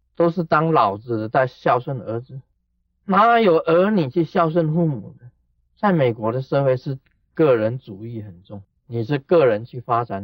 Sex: male